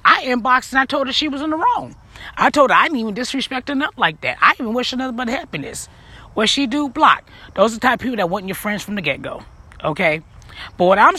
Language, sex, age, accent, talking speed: English, female, 30-49, American, 270 wpm